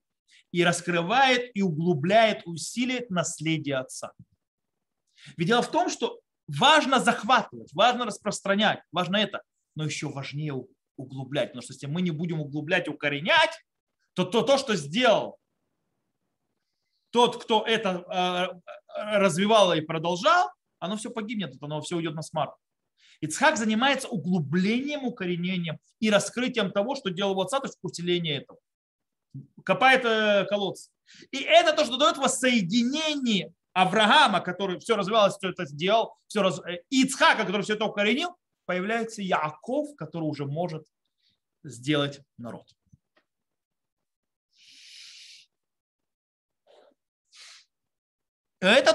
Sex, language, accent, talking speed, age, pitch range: male, Russian, native, 115 wpm, 30-49, 170-245 Hz